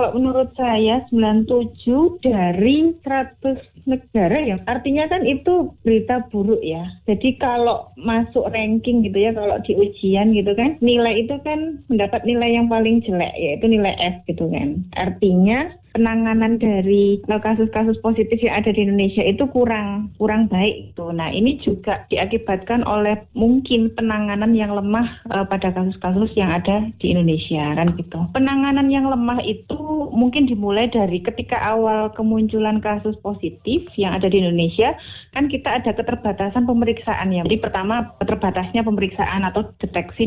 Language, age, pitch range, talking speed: Indonesian, 30-49, 190-235 Hz, 145 wpm